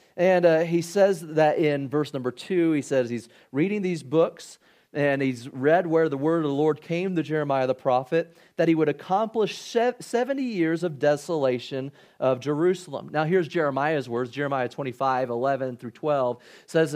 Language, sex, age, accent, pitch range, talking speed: English, male, 30-49, American, 135-170 Hz, 175 wpm